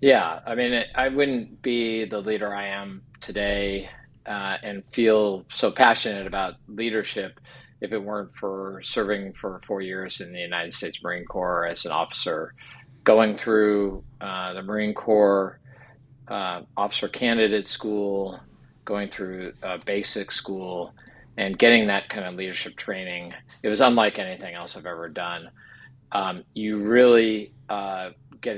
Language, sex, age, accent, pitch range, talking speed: English, male, 40-59, American, 100-120 Hz, 150 wpm